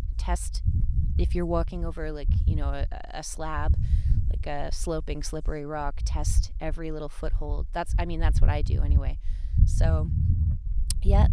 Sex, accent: female, American